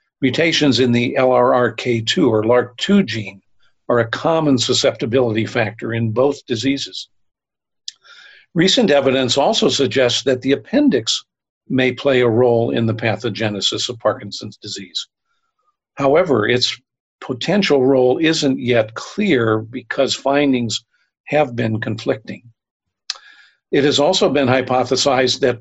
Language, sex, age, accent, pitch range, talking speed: English, male, 50-69, American, 115-140 Hz, 120 wpm